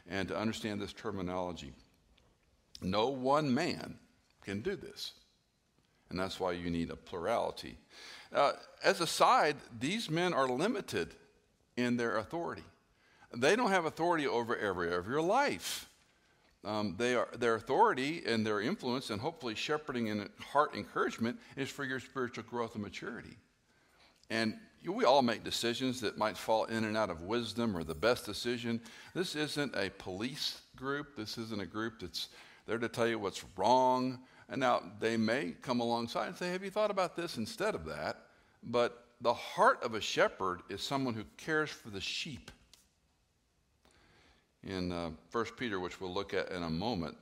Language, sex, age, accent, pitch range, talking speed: English, male, 60-79, American, 95-125 Hz, 165 wpm